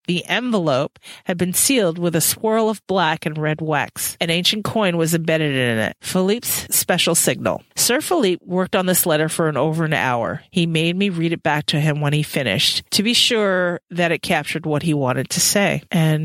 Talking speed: 210 wpm